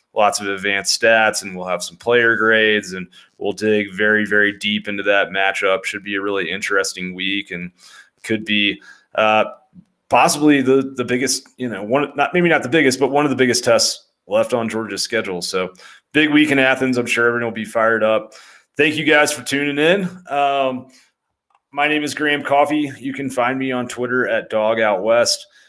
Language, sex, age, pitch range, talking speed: English, male, 30-49, 100-125 Hz, 200 wpm